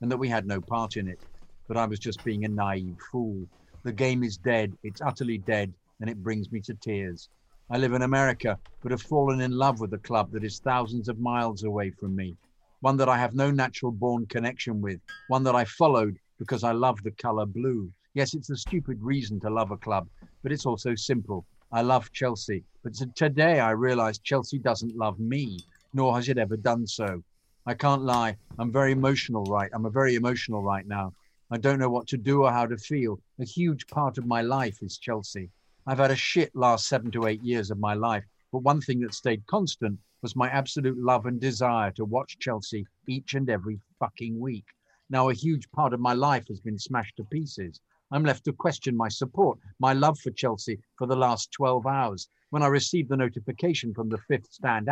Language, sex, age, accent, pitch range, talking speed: English, male, 50-69, British, 105-130 Hz, 215 wpm